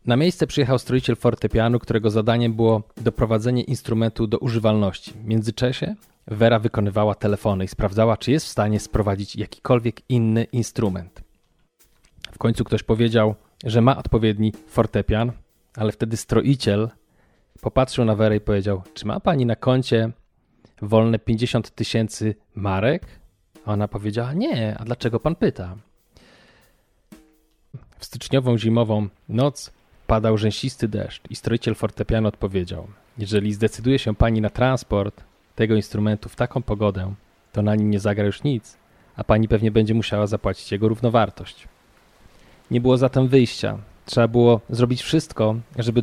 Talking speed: 135 wpm